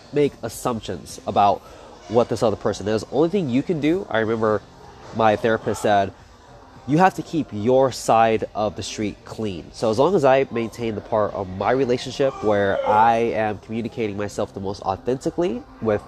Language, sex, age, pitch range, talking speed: English, male, 20-39, 105-130 Hz, 180 wpm